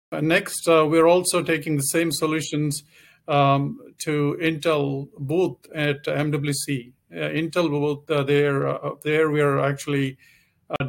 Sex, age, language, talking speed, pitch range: male, 50-69, English, 140 wpm, 135-150 Hz